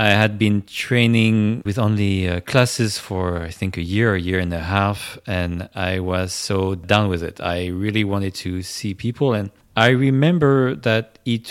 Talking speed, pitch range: 190 wpm, 95-120 Hz